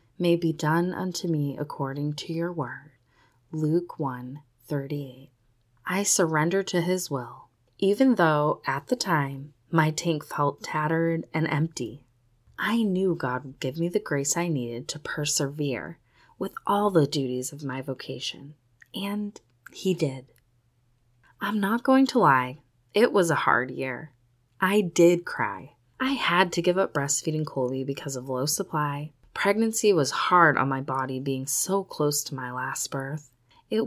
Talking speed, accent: 155 wpm, American